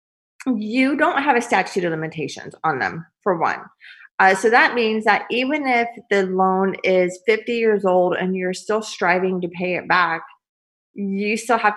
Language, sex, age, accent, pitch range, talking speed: English, female, 30-49, American, 185-225 Hz, 180 wpm